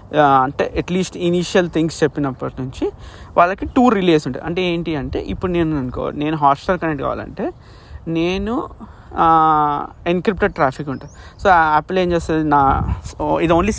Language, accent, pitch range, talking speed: Telugu, native, 145-180 Hz, 135 wpm